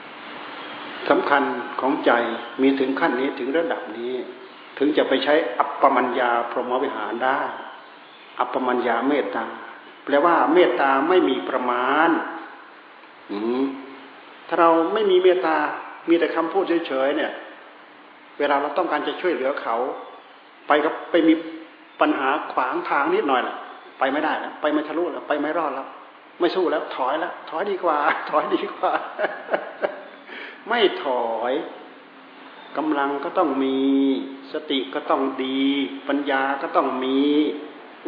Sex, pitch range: male, 140-175 Hz